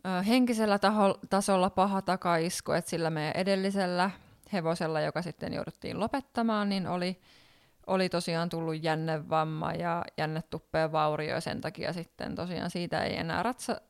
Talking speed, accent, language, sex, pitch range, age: 130 wpm, native, Finnish, female, 165-195 Hz, 20-39